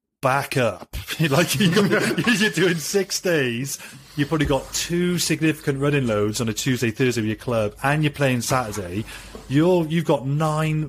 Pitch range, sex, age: 105-135 Hz, male, 30-49